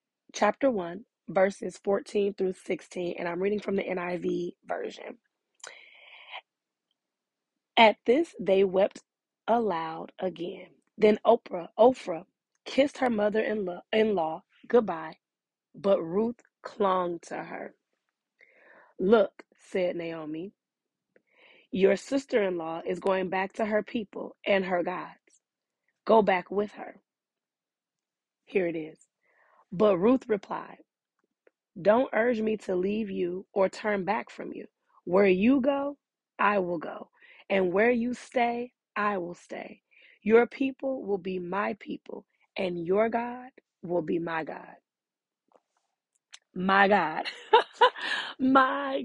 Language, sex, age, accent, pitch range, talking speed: English, female, 20-39, American, 185-235 Hz, 115 wpm